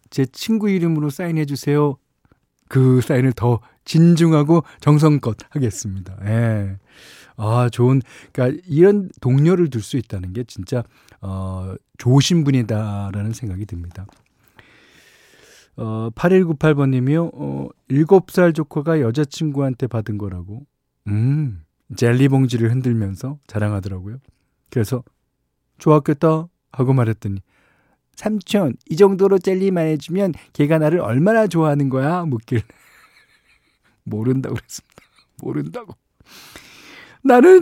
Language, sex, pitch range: Korean, male, 120-185 Hz